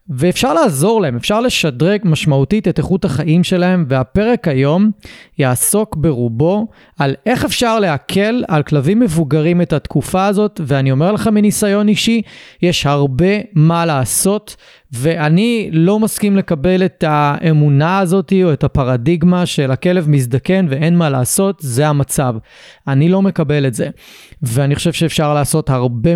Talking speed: 140 wpm